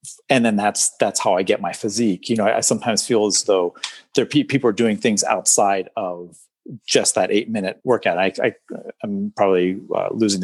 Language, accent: English, American